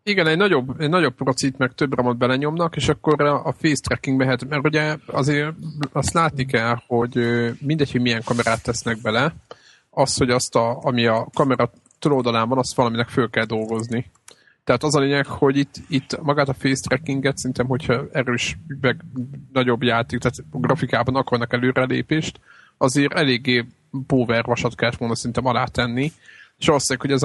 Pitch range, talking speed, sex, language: 120-140 Hz, 165 wpm, male, Hungarian